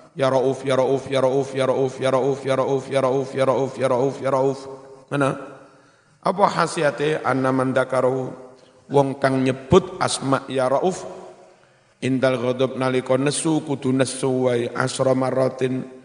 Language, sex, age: Indonesian, male, 50-69